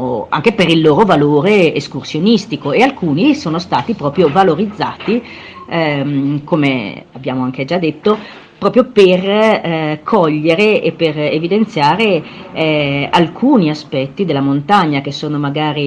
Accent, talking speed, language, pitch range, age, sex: native, 125 wpm, Italian, 140-175 Hz, 40-59, female